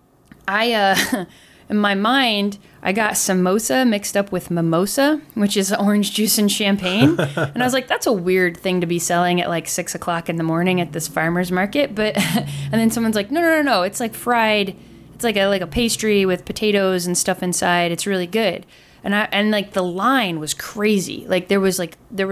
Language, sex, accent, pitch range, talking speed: English, female, American, 170-205 Hz, 210 wpm